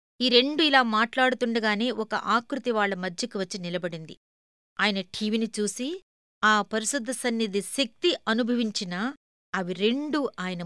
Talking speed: 120 wpm